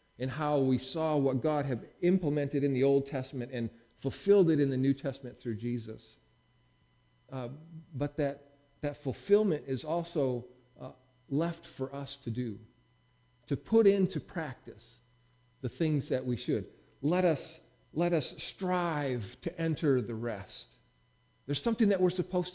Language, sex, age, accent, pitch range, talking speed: English, male, 50-69, American, 125-175 Hz, 150 wpm